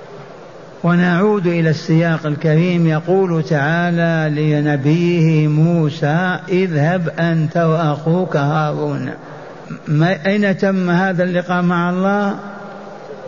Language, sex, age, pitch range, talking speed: Arabic, male, 50-69, 160-190 Hz, 80 wpm